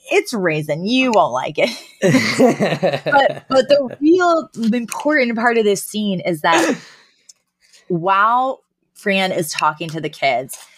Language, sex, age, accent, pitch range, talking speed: English, female, 20-39, American, 150-200 Hz, 135 wpm